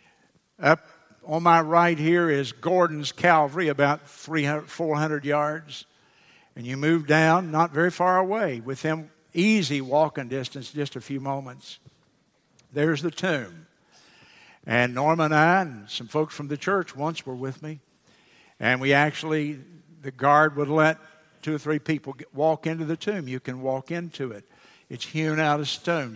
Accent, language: American, English